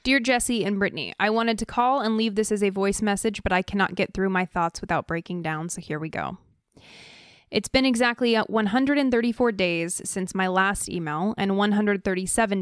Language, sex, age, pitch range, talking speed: English, female, 20-39, 180-215 Hz, 190 wpm